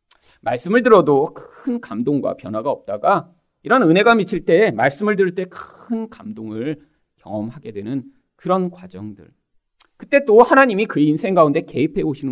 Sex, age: male, 40-59